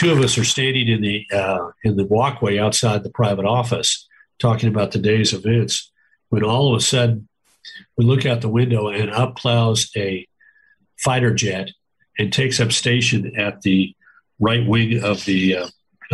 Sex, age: male, 50-69